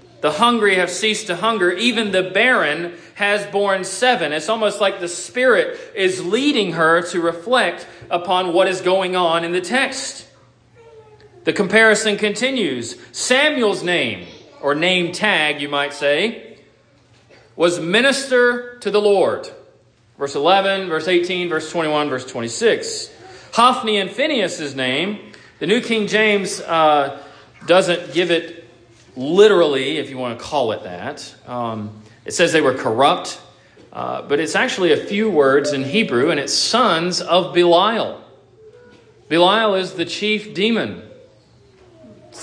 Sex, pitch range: male, 145-215 Hz